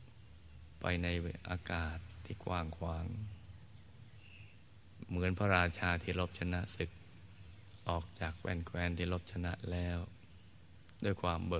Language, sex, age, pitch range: Thai, male, 20-39, 85-100 Hz